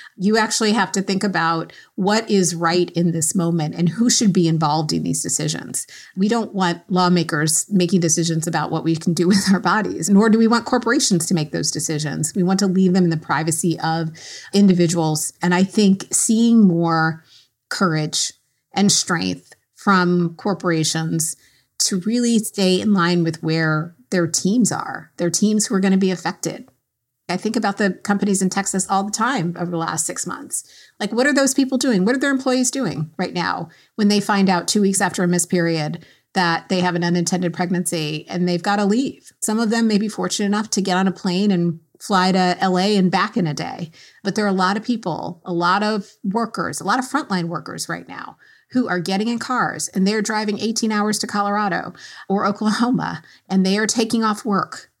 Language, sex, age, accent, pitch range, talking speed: English, female, 30-49, American, 170-210 Hz, 205 wpm